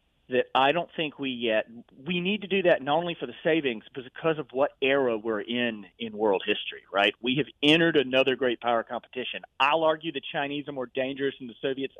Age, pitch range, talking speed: 40-59, 120-155 Hz, 225 wpm